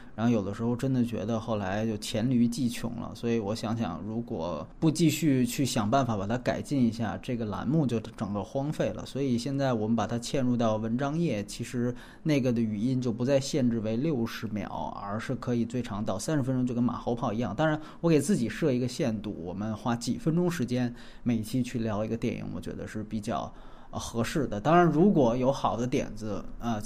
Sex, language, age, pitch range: male, Chinese, 20-39, 115-135 Hz